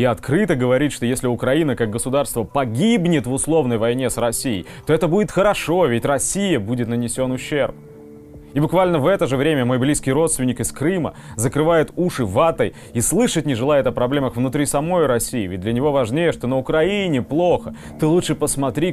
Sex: male